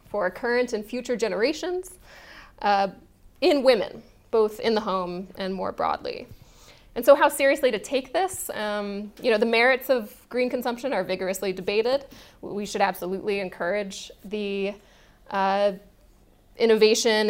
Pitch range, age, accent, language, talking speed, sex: 195-240 Hz, 20-39, American, English, 140 wpm, female